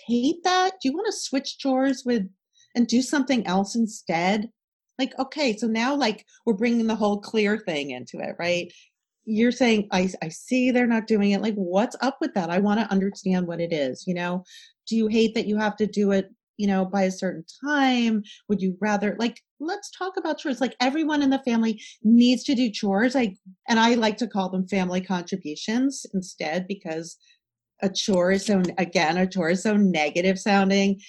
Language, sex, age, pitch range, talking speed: English, female, 40-59, 195-280 Hz, 205 wpm